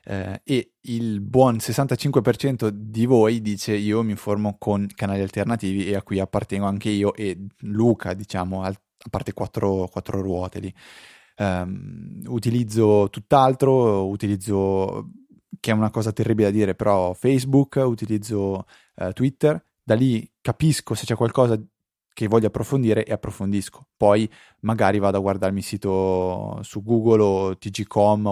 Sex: male